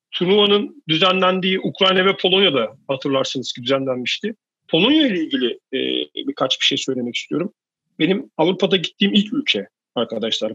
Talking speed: 130 wpm